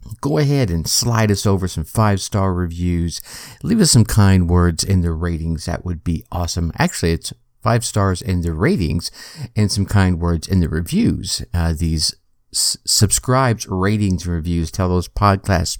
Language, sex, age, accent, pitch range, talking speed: English, male, 50-69, American, 85-115 Hz, 170 wpm